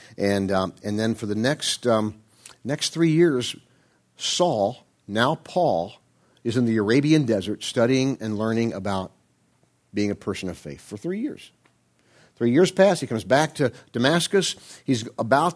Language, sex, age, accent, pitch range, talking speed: English, male, 50-69, American, 130-185 Hz, 160 wpm